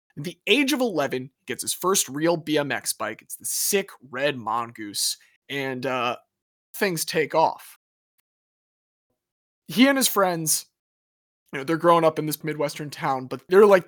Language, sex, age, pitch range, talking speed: English, male, 20-39, 135-185 Hz, 165 wpm